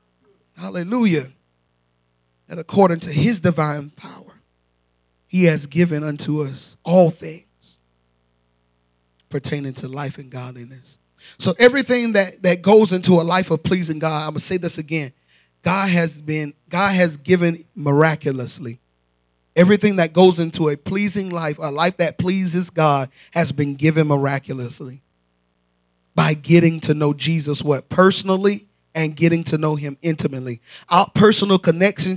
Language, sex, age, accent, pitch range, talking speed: English, male, 30-49, American, 130-180 Hz, 135 wpm